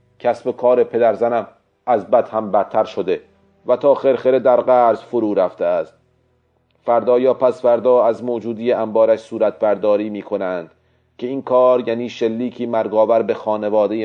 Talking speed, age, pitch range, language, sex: 155 wpm, 40-59, 110-125 Hz, Persian, male